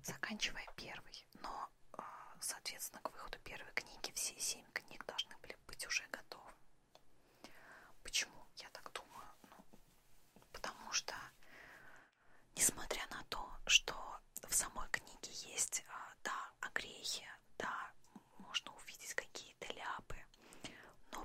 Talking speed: 110 wpm